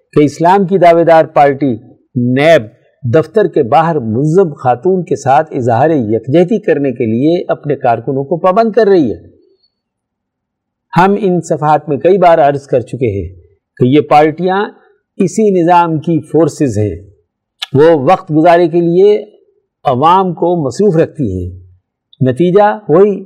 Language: Urdu